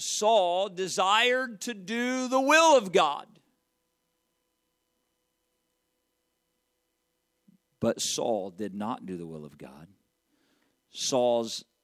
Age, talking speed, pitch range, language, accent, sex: 50-69, 90 wpm, 150-240 Hz, English, American, male